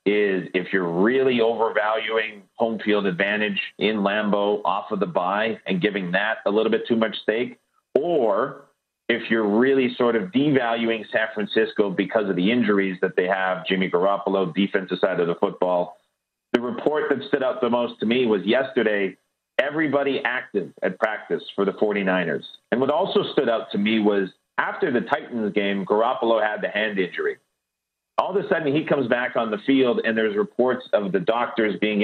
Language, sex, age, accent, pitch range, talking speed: English, male, 40-59, American, 105-125 Hz, 185 wpm